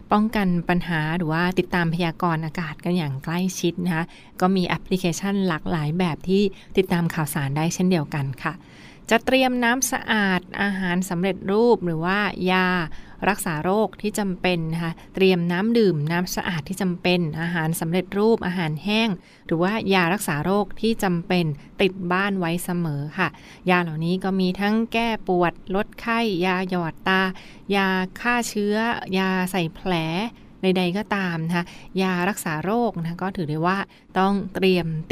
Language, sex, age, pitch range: Thai, female, 20-39, 175-200 Hz